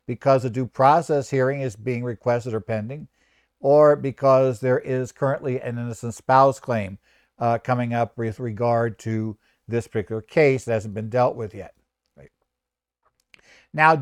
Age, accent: 60-79, American